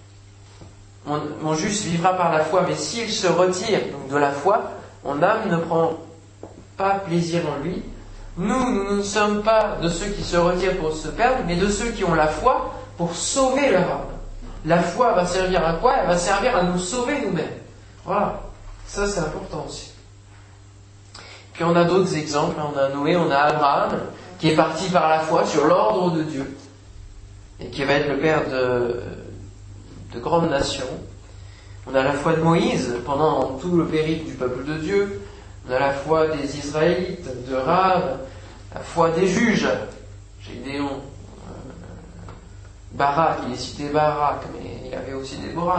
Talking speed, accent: 175 wpm, French